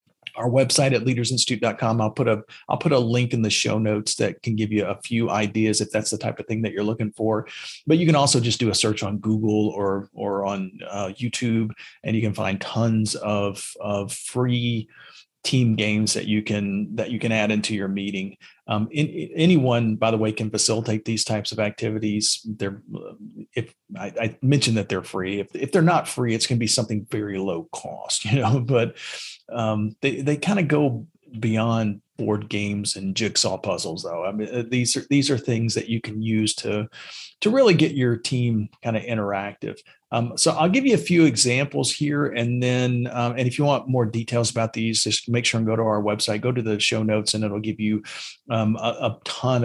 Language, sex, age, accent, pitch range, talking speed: English, male, 40-59, American, 110-125 Hz, 215 wpm